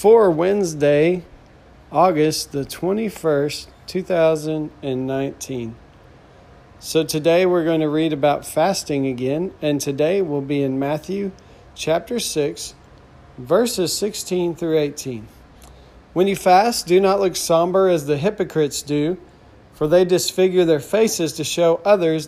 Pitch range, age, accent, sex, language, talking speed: 140-175 Hz, 40-59, American, male, English, 125 wpm